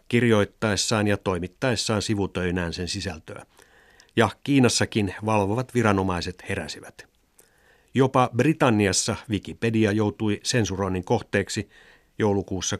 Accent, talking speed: native, 85 wpm